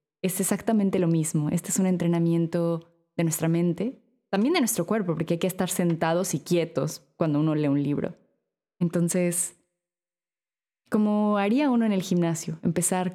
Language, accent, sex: Spanish, Mexican, female